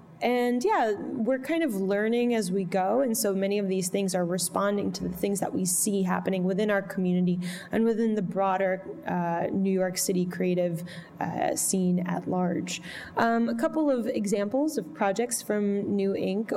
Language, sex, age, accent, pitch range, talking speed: English, female, 10-29, American, 190-235 Hz, 180 wpm